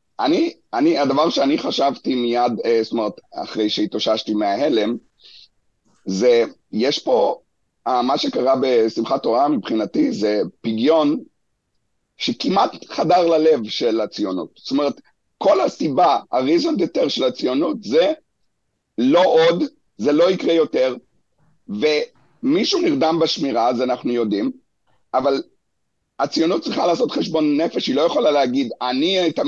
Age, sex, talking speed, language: 50-69, male, 115 wpm, English